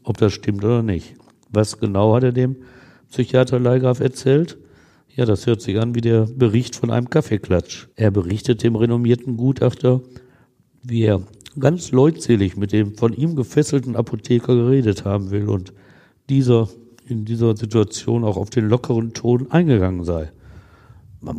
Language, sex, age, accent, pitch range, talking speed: German, male, 60-79, German, 100-125 Hz, 155 wpm